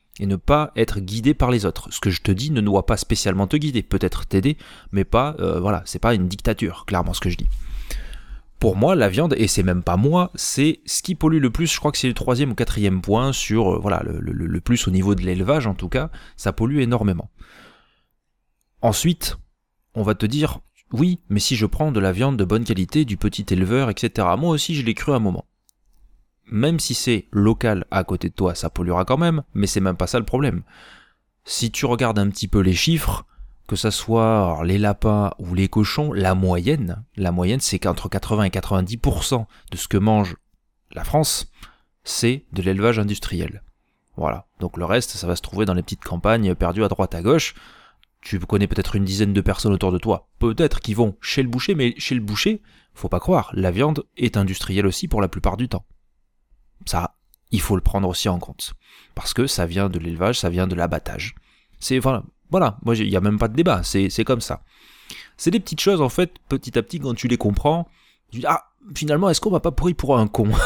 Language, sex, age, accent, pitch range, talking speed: French, male, 30-49, French, 95-125 Hz, 225 wpm